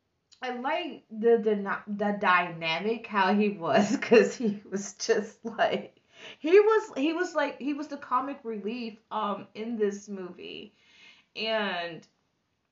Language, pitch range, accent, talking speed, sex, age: English, 210-235 Hz, American, 135 wpm, female, 20-39